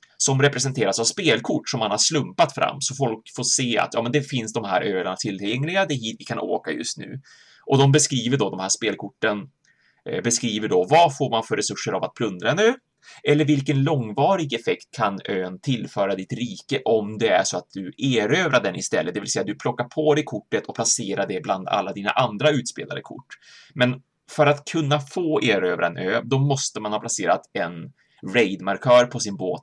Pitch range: 115-145 Hz